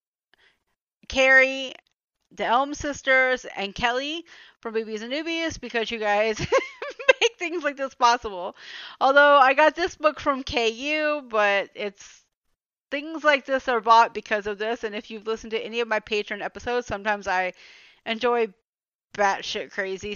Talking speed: 150 wpm